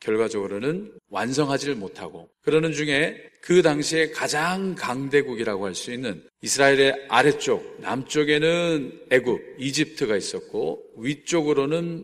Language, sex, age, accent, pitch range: Korean, male, 40-59, native, 140-195 Hz